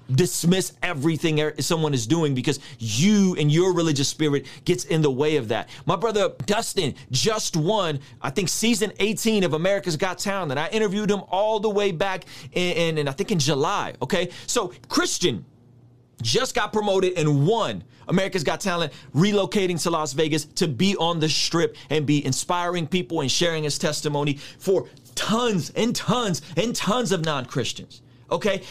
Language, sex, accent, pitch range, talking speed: English, male, American, 150-210 Hz, 165 wpm